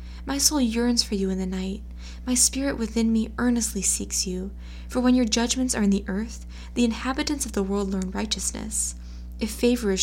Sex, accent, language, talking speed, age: female, American, English, 195 wpm, 20-39